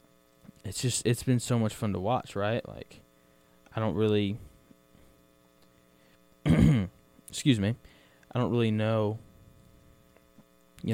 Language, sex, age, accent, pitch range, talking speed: English, male, 10-29, American, 80-120 Hz, 115 wpm